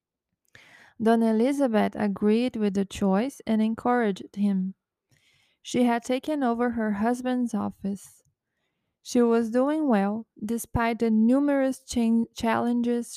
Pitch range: 205-240 Hz